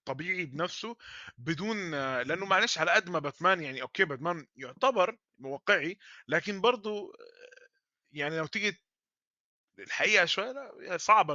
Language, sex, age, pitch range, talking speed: Arabic, male, 20-39, 135-190 Hz, 115 wpm